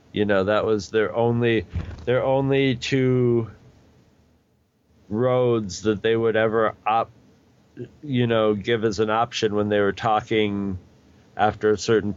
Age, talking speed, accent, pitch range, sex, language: 40-59, 140 wpm, American, 105-120 Hz, male, English